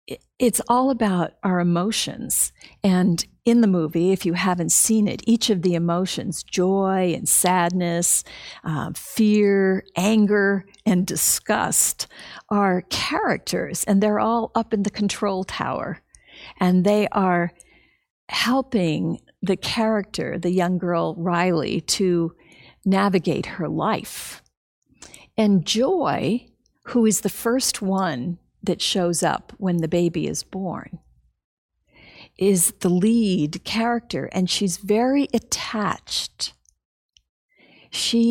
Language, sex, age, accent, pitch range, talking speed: English, female, 50-69, American, 175-220 Hz, 115 wpm